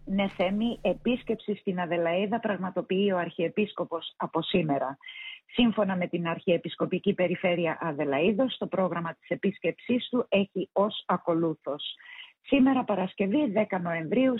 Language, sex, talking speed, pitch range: Greek, female, 115 wpm, 165-215 Hz